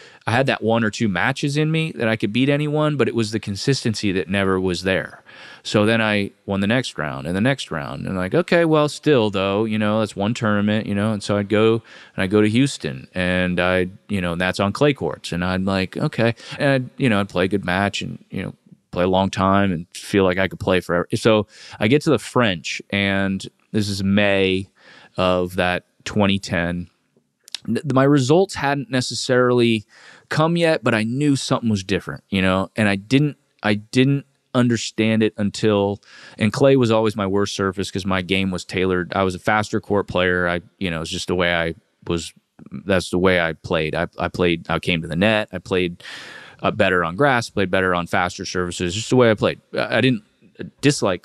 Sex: male